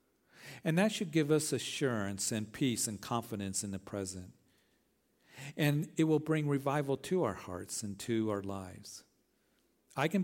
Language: English